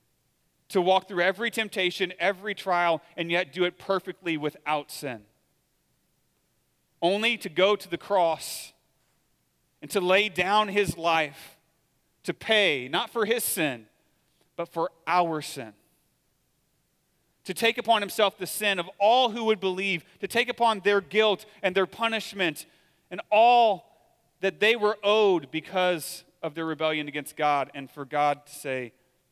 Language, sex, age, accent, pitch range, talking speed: English, male, 40-59, American, 145-195 Hz, 145 wpm